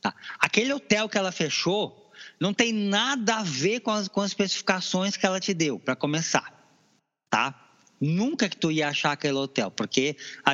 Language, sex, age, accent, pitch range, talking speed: Portuguese, male, 20-39, Brazilian, 120-190 Hz, 180 wpm